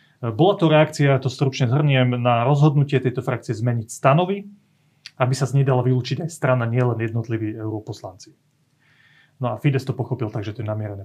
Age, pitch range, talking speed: 30-49, 115-145 Hz, 165 wpm